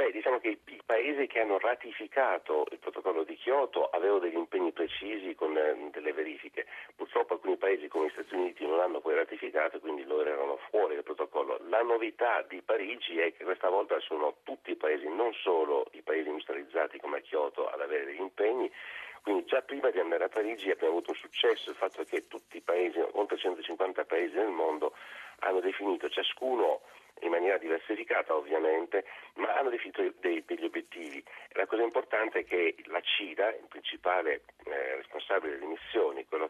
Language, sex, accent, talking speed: Italian, male, native, 180 wpm